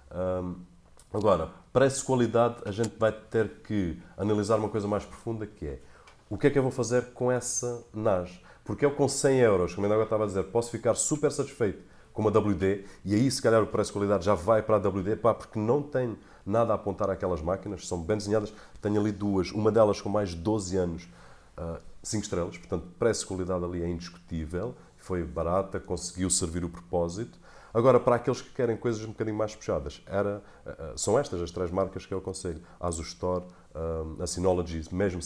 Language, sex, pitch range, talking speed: Portuguese, male, 85-105 Hz, 195 wpm